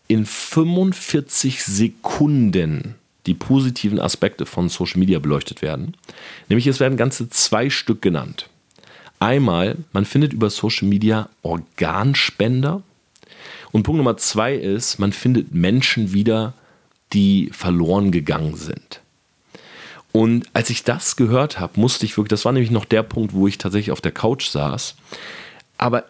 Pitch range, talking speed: 100-130 Hz, 140 wpm